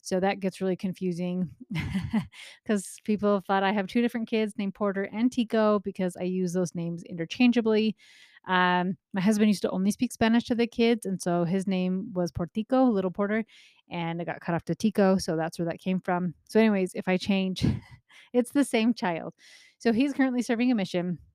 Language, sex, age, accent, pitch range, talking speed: English, female, 30-49, American, 180-215 Hz, 195 wpm